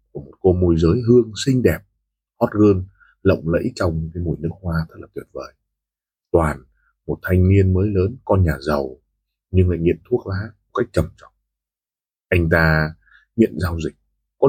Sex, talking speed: male, 185 wpm